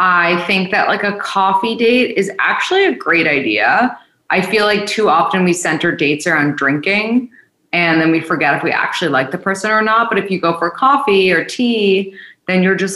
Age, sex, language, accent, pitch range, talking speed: 20-39, female, English, American, 155-200 Hz, 210 wpm